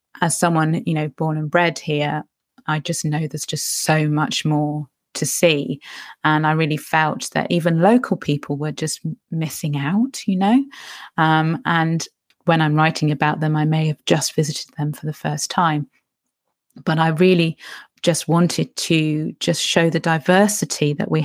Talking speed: 170 wpm